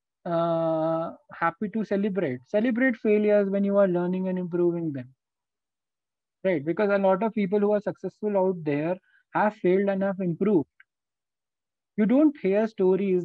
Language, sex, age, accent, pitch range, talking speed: English, male, 20-39, Indian, 160-200 Hz, 150 wpm